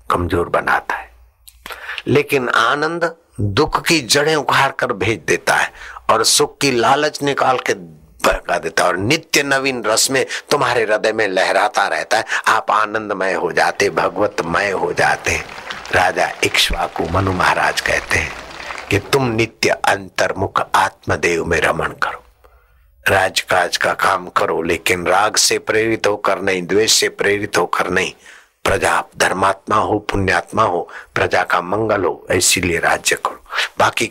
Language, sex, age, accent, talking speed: Hindi, male, 60-79, native, 110 wpm